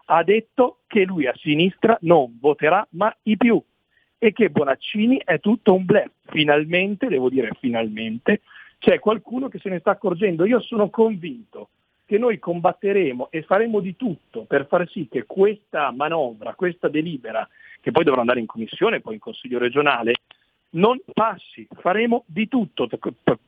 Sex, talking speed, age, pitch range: male, 160 wpm, 50-69, 135-210 Hz